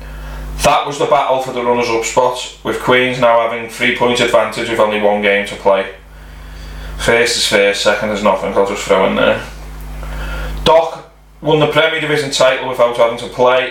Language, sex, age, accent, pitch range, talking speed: English, male, 20-39, British, 115-135 Hz, 185 wpm